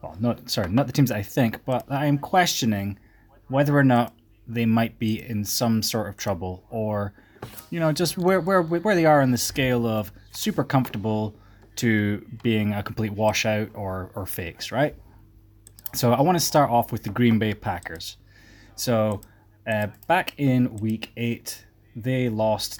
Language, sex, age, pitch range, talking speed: English, male, 20-39, 105-130 Hz, 175 wpm